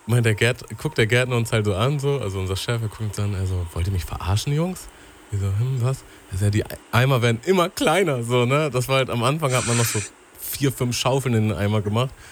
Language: German